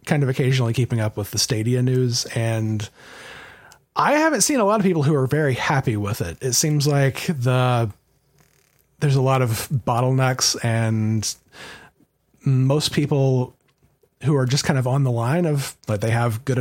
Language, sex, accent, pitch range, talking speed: English, male, American, 115-140 Hz, 175 wpm